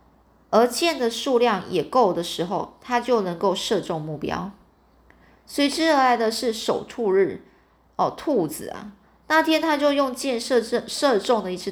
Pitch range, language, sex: 185-245 Hz, Chinese, female